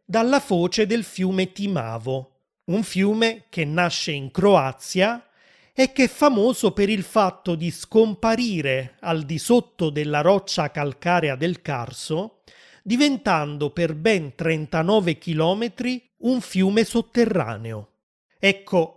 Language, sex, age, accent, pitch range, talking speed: Italian, male, 30-49, native, 155-205 Hz, 115 wpm